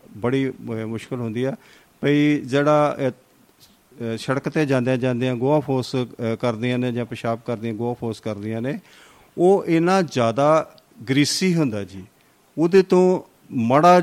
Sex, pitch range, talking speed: male, 120-150 Hz, 130 wpm